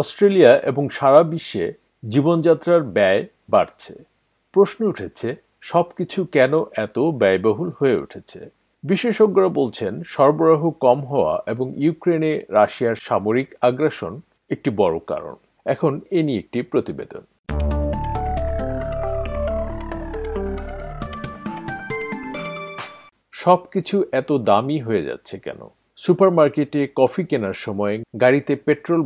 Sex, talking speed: male, 50 wpm